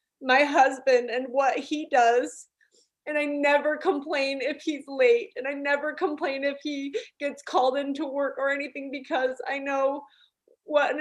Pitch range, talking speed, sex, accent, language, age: 235-290 Hz, 165 wpm, female, American, English, 20-39